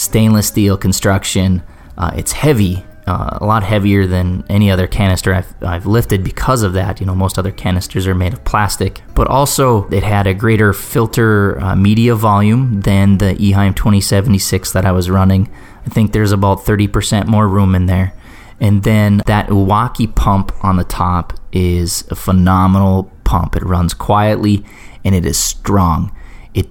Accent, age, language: American, 20-39, English